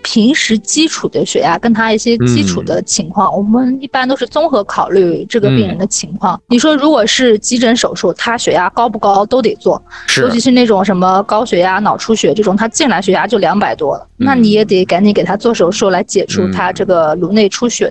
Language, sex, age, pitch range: Chinese, female, 20-39, 195-250 Hz